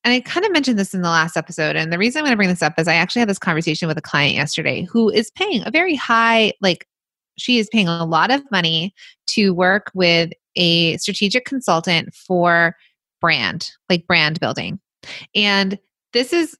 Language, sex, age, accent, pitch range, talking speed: English, female, 20-39, American, 170-230 Hz, 205 wpm